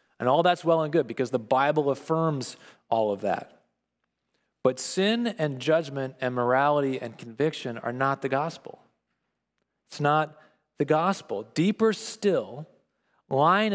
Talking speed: 140 wpm